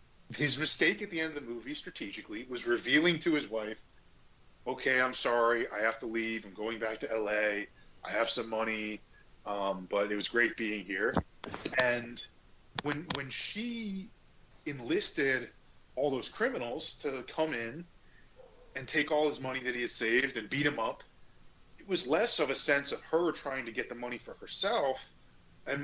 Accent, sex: American, male